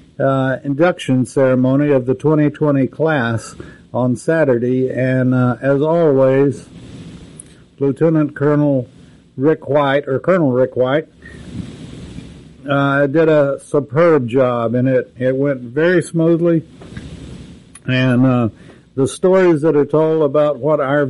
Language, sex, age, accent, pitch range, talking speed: English, male, 60-79, American, 130-155 Hz, 120 wpm